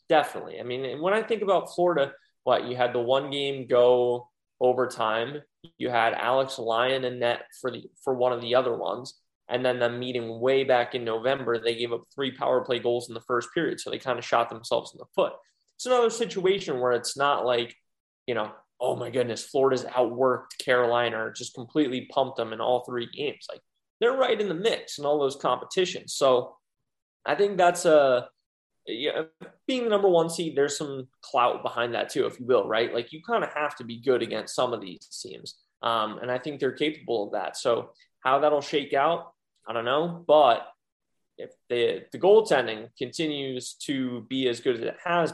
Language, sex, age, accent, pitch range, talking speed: English, male, 20-39, American, 120-150 Hz, 205 wpm